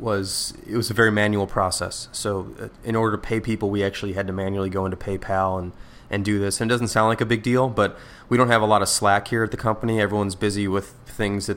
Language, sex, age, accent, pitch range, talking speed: English, male, 20-39, American, 100-115 Hz, 260 wpm